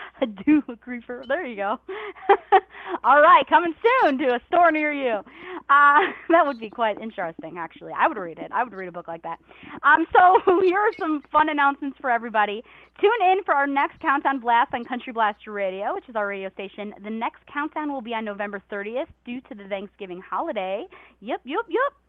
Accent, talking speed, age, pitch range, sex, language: American, 200 wpm, 30-49, 225-315 Hz, female, English